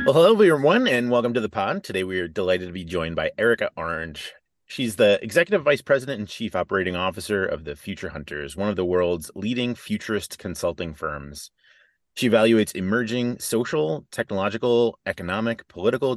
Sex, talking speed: male, 170 wpm